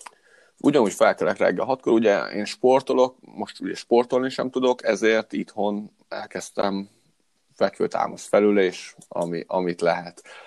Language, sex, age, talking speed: Hungarian, male, 30-49, 120 wpm